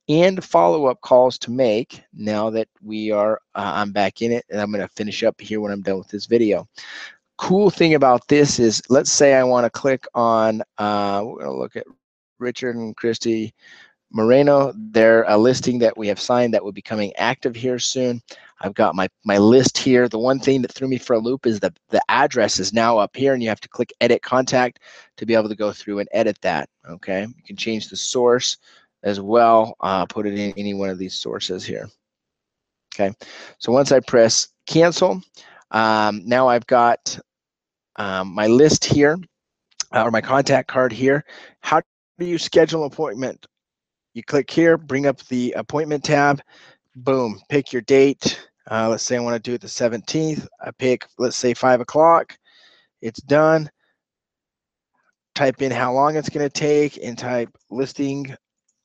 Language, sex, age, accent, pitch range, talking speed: English, male, 30-49, American, 110-135 Hz, 190 wpm